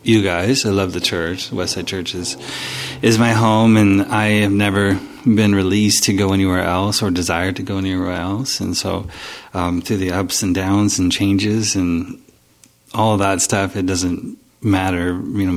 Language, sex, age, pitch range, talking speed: English, male, 30-49, 90-105 Hz, 190 wpm